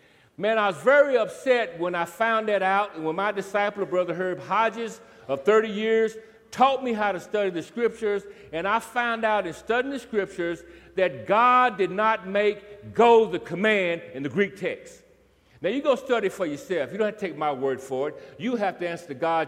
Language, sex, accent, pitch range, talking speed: English, male, American, 175-245 Hz, 210 wpm